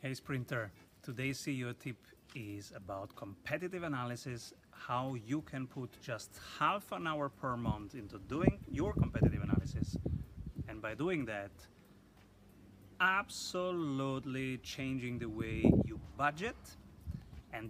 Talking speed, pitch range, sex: 120 wpm, 100-135 Hz, male